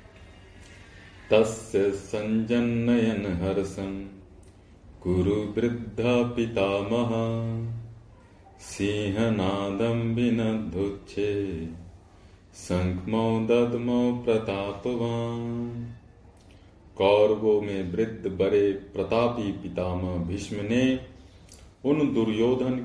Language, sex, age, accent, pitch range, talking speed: Hindi, male, 40-59, native, 95-115 Hz, 30 wpm